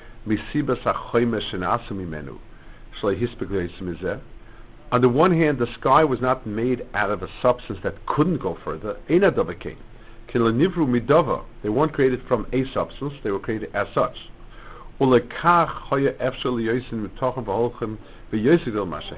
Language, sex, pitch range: English, male, 105-125 Hz